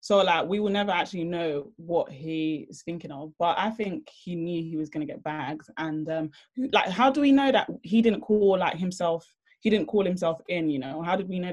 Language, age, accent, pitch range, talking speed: English, 20-39, British, 160-200 Hz, 240 wpm